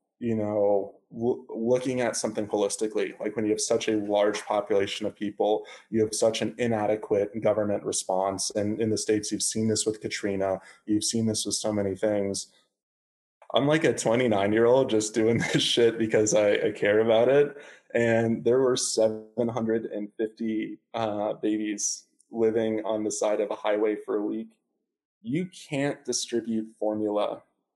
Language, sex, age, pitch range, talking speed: English, male, 20-39, 105-115 Hz, 160 wpm